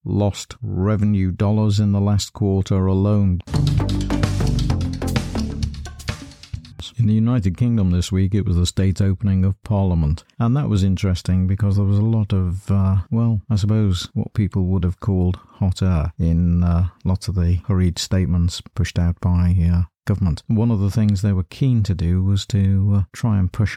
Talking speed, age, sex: 175 wpm, 50-69, male